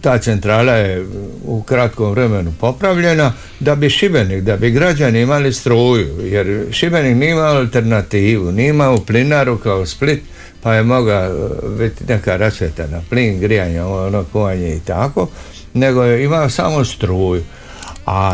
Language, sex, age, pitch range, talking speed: Croatian, male, 60-79, 90-125 Hz, 140 wpm